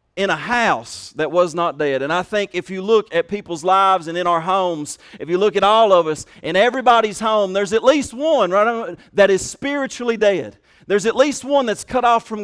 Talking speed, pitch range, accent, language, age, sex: 225 wpm, 195-245 Hz, American, English, 40-59, male